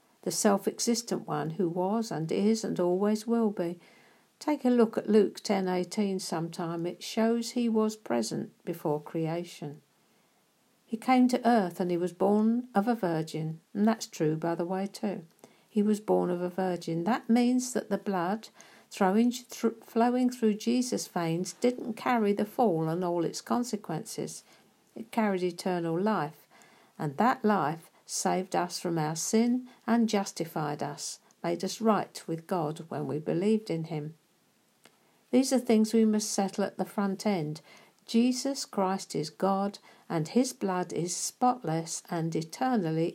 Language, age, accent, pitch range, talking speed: English, 60-79, British, 170-230 Hz, 155 wpm